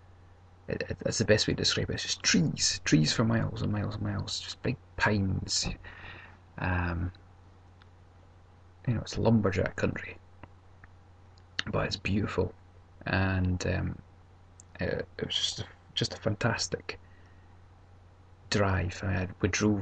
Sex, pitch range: male, 90-100 Hz